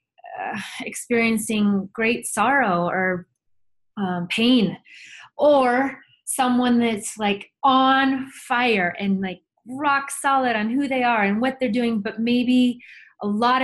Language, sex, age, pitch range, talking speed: English, female, 20-39, 195-235 Hz, 130 wpm